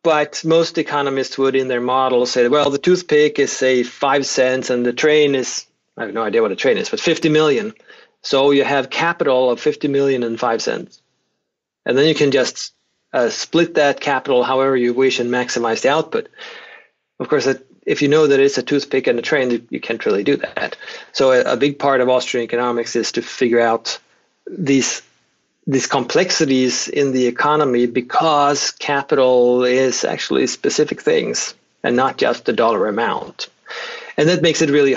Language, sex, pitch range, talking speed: English, male, 130-155 Hz, 185 wpm